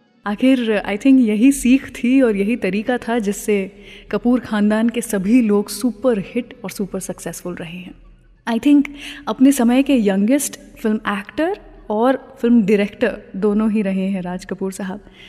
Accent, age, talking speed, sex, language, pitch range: Indian, 20-39, 160 wpm, female, English, 200-260 Hz